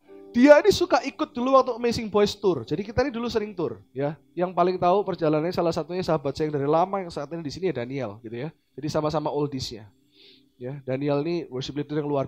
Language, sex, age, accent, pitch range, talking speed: Indonesian, male, 20-39, native, 145-230 Hz, 230 wpm